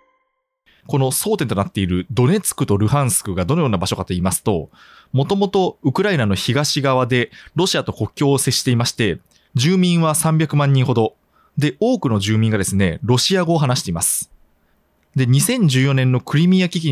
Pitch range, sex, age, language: 100-160 Hz, male, 20-39, Japanese